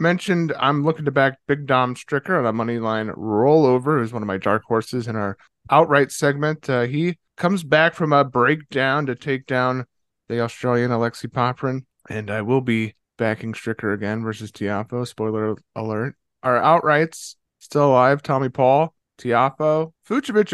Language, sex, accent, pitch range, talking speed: English, male, American, 115-160 Hz, 165 wpm